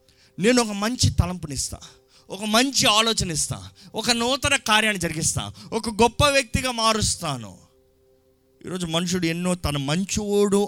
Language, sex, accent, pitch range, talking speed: Telugu, male, native, 130-215 Hz, 120 wpm